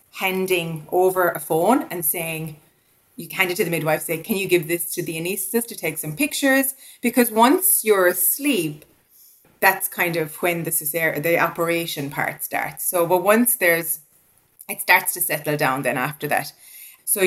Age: 20-39